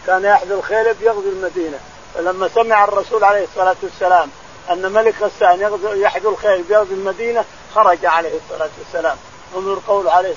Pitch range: 195-230 Hz